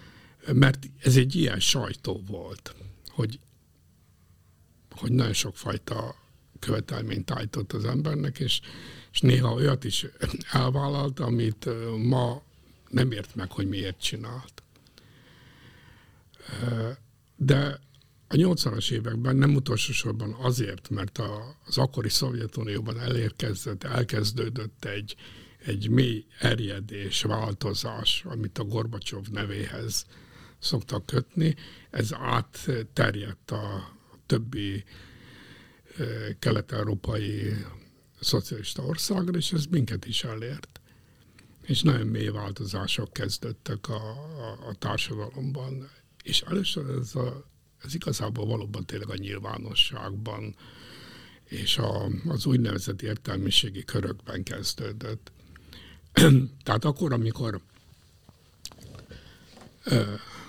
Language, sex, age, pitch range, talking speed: Hungarian, male, 60-79, 105-130 Hz, 95 wpm